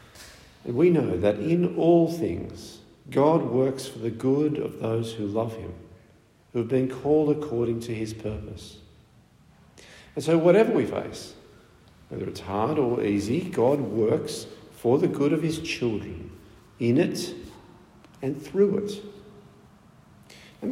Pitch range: 110-150 Hz